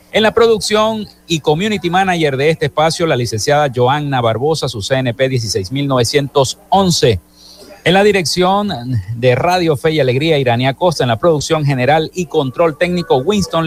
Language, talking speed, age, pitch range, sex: Spanish, 150 wpm, 50-69, 140-185 Hz, male